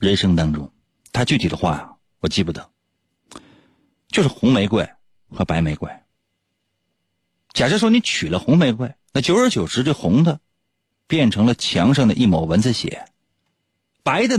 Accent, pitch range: native, 90-125 Hz